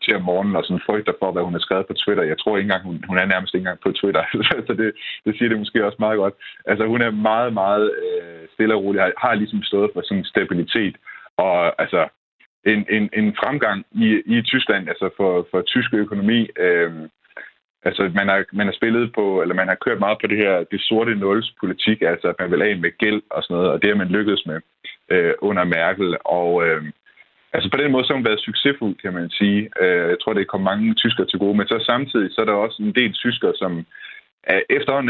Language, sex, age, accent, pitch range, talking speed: Danish, male, 30-49, native, 95-115 Hz, 225 wpm